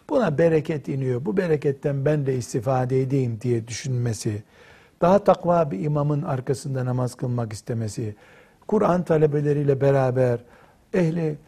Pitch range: 135-175 Hz